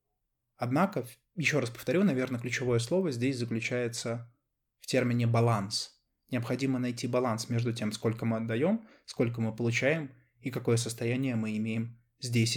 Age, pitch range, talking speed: 20-39, 115-135 Hz, 140 wpm